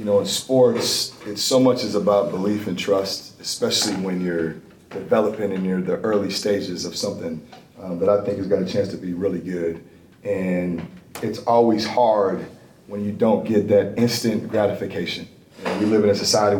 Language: English